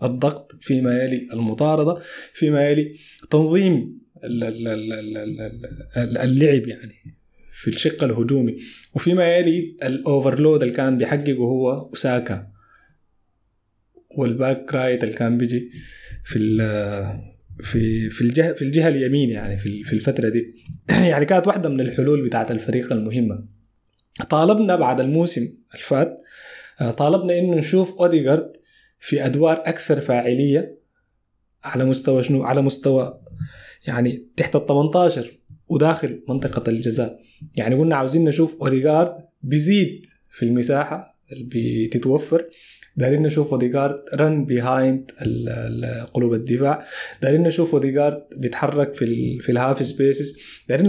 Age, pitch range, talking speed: 20-39, 120-155 Hz, 115 wpm